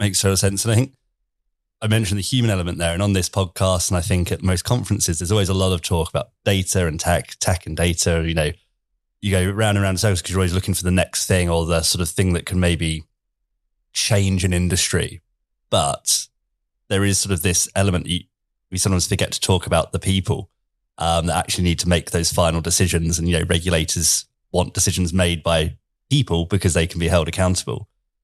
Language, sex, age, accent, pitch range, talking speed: English, male, 30-49, British, 85-100 Hz, 215 wpm